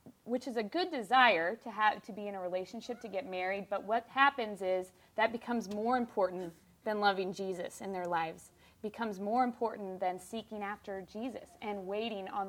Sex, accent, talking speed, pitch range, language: female, American, 190 wpm, 195-235 Hz, English